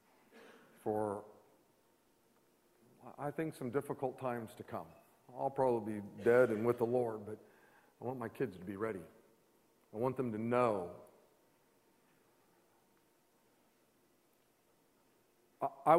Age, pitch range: 50-69, 120-140 Hz